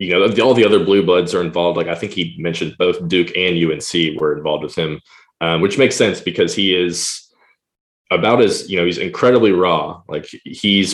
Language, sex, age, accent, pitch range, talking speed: English, male, 20-39, American, 85-100 Hz, 215 wpm